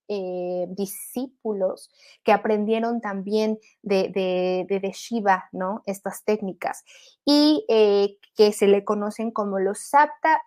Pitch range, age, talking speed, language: 200-250 Hz, 20-39, 125 wpm, Spanish